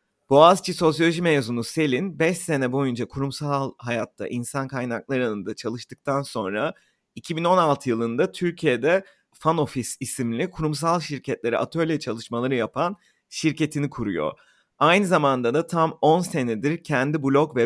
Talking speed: 120 wpm